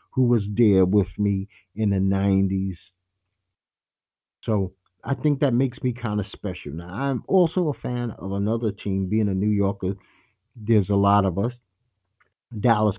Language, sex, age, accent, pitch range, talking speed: English, male, 50-69, American, 95-120 Hz, 160 wpm